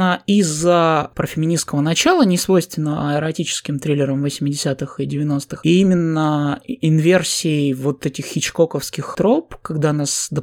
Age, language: 20-39, Russian